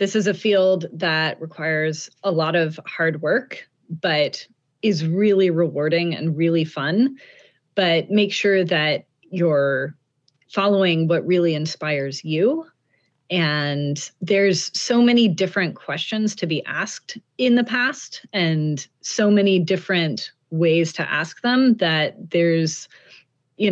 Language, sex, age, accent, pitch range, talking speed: English, female, 30-49, American, 155-190 Hz, 130 wpm